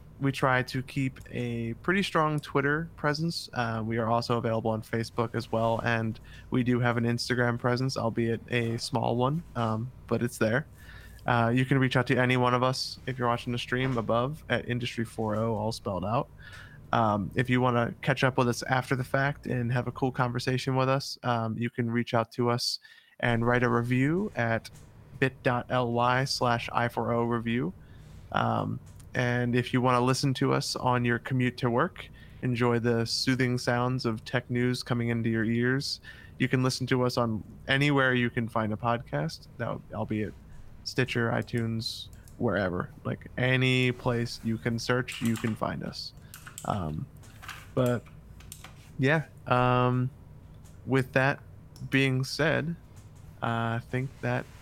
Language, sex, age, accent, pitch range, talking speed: English, male, 20-39, American, 115-130 Hz, 170 wpm